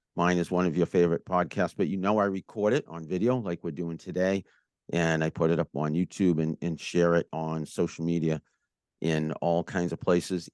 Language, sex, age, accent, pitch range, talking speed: English, male, 50-69, American, 85-100 Hz, 215 wpm